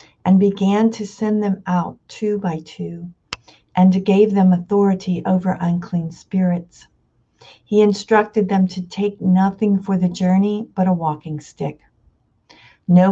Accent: American